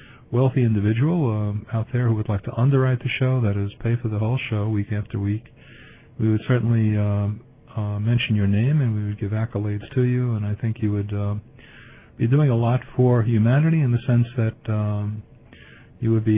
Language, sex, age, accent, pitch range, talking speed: English, male, 50-69, American, 105-125 Hz, 210 wpm